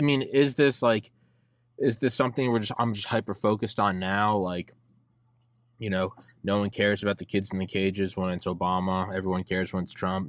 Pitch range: 95-120 Hz